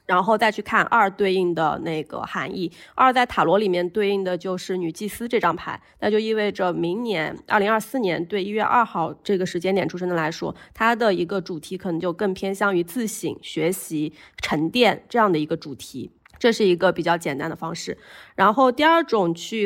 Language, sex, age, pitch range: Chinese, female, 30-49, 175-215 Hz